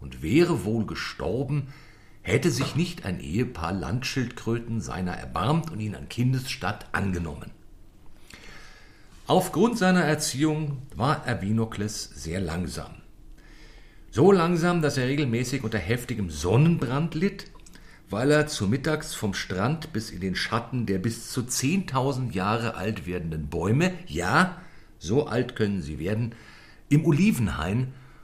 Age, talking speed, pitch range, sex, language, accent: 50-69, 125 wpm, 95-145 Hz, male, German, German